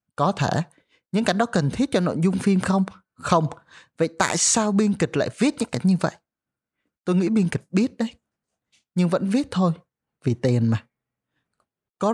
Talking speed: 190 wpm